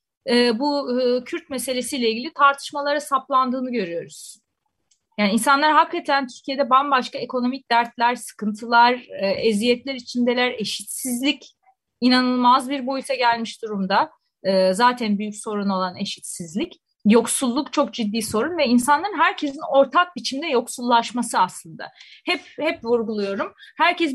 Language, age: Turkish, 30-49